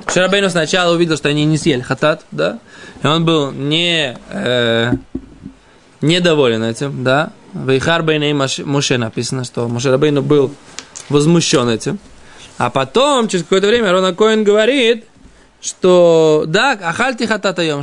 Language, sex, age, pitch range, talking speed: Russian, male, 20-39, 145-195 Hz, 130 wpm